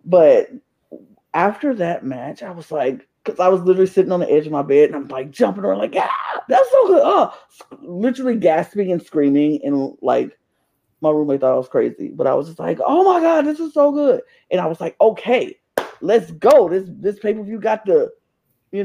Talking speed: 210 wpm